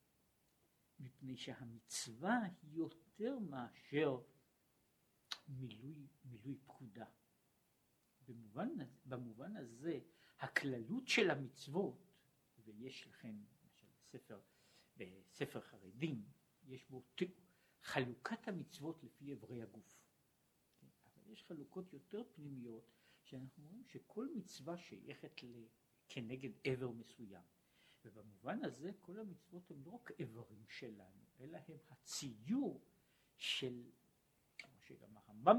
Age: 60-79